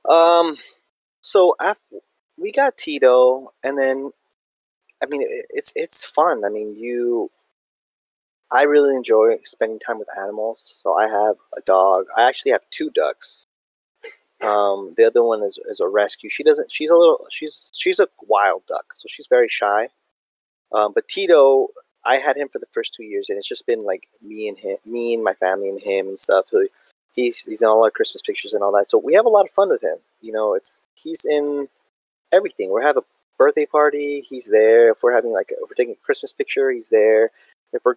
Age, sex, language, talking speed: 20-39, male, English, 200 wpm